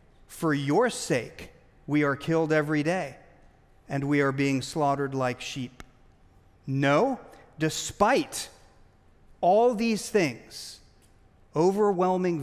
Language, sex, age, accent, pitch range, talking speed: English, male, 40-59, American, 140-185 Hz, 100 wpm